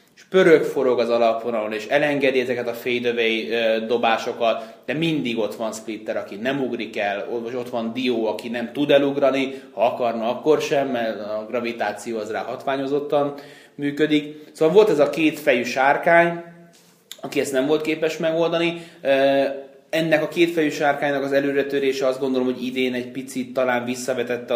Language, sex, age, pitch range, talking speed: Hungarian, male, 30-49, 115-140 Hz, 155 wpm